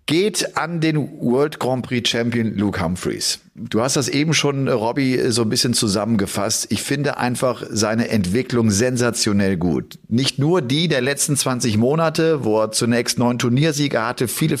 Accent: German